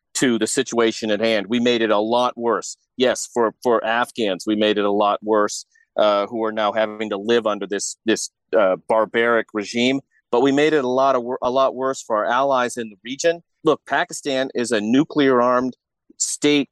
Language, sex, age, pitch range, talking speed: English, male, 40-59, 115-145 Hz, 205 wpm